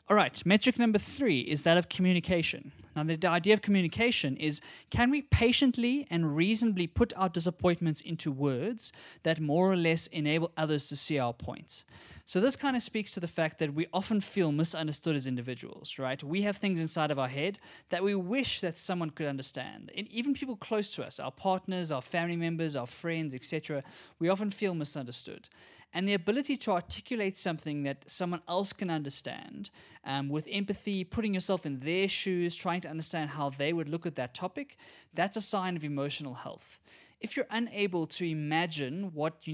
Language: English